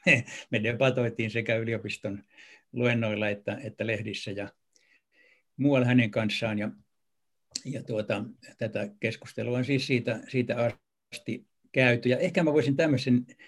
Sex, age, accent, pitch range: male, 60-79, native, 110-135 Hz